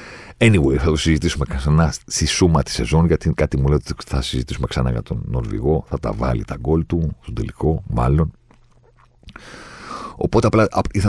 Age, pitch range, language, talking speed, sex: 40-59, 70-100 Hz, Greek, 175 wpm, male